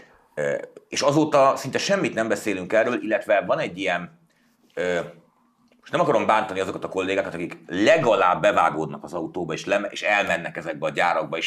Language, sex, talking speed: Hungarian, male, 145 wpm